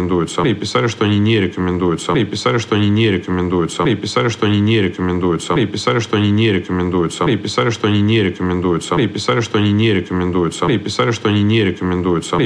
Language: Russian